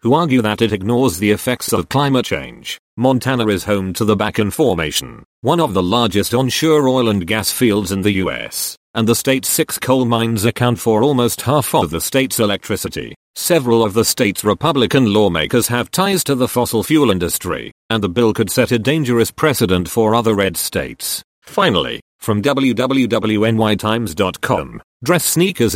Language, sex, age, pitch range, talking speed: English, male, 40-59, 105-130 Hz, 170 wpm